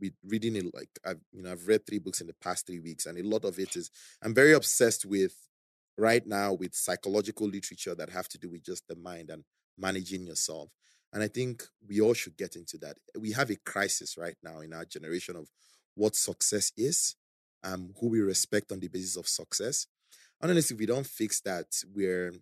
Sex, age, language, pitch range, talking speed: male, 20-39, English, 90-110 Hz, 210 wpm